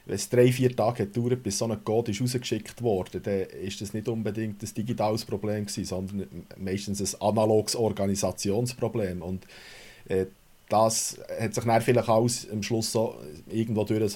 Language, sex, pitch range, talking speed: German, male, 105-125 Hz, 175 wpm